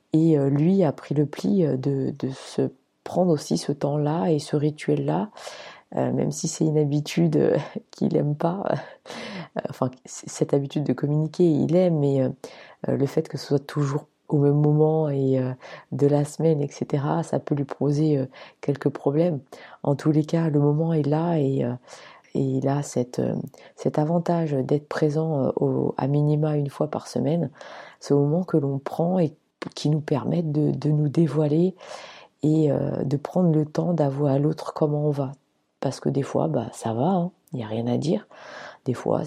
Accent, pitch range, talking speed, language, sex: French, 140-160 Hz, 180 wpm, French, female